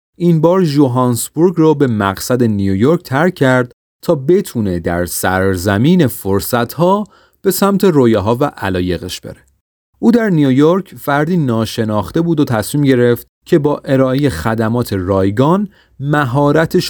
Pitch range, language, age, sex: 100-150 Hz, Persian, 30-49, male